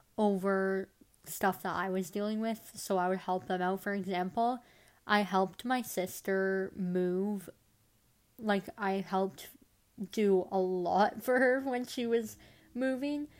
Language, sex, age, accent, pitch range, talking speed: English, female, 20-39, American, 190-220 Hz, 145 wpm